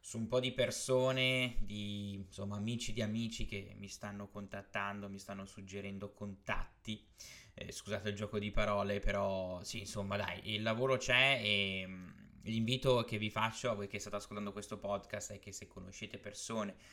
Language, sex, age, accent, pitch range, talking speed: Italian, male, 20-39, native, 100-115 Hz, 170 wpm